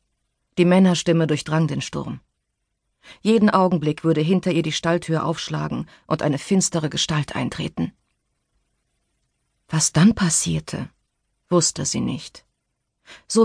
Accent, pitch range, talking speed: German, 155-195 Hz, 110 wpm